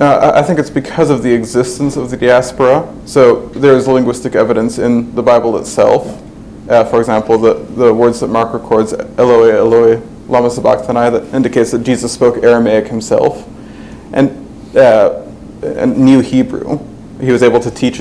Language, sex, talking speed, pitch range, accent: English, male, 160 wpm, 115-125 Hz, American